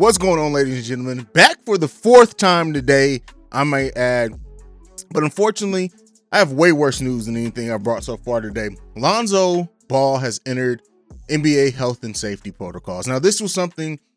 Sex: male